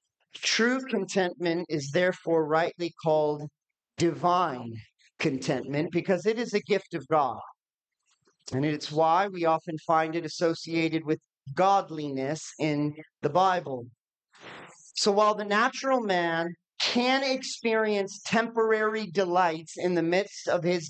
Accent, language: American, English